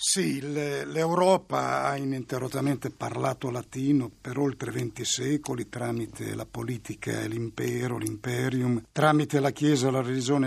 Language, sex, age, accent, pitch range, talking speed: Italian, male, 60-79, native, 130-160 Hz, 120 wpm